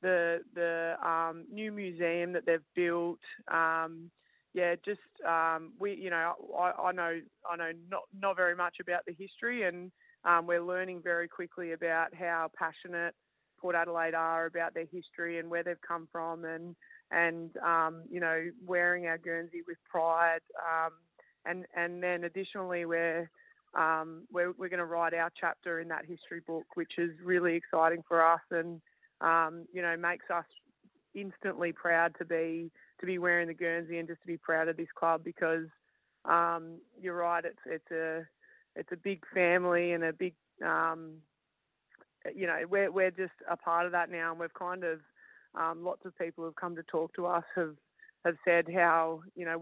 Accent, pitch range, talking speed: Australian, 165-180 Hz, 180 wpm